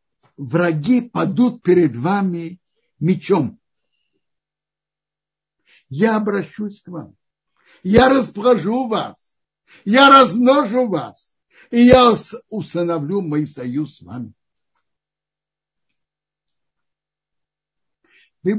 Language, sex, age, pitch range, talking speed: Russian, male, 60-79, 135-200 Hz, 75 wpm